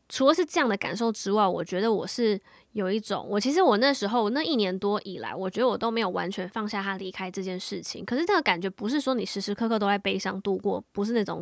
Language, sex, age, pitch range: Chinese, female, 20-39, 190-225 Hz